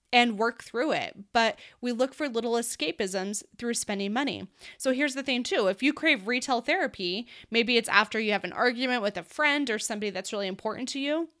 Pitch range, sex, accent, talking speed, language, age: 210-265 Hz, female, American, 210 wpm, English, 20-39